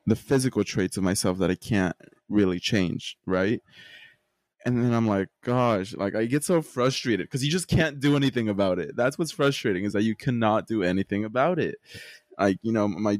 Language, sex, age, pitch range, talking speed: English, male, 20-39, 95-125 Hz, 200 wpm